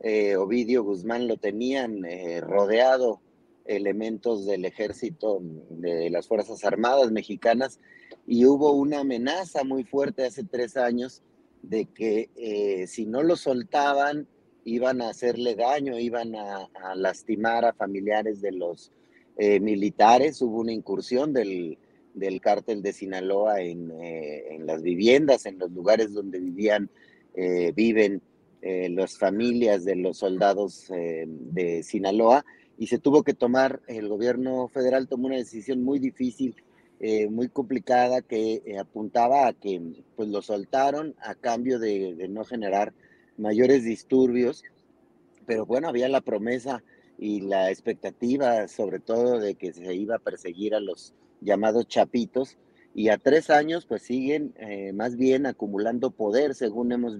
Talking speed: 145 wpm